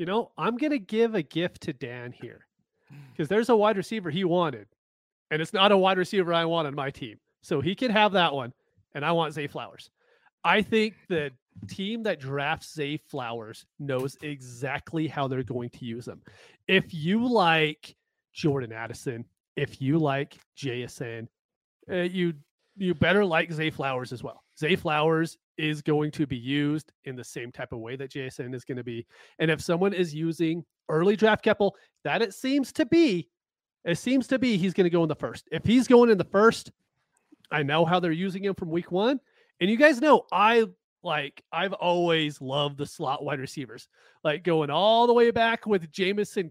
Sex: male